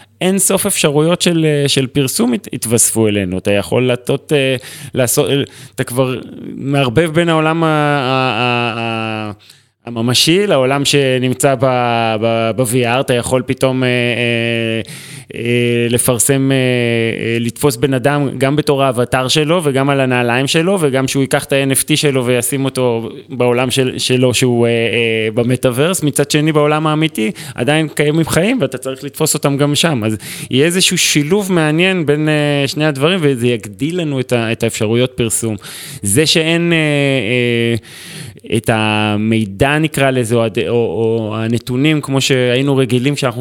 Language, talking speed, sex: Hebrew, 145 wpm, male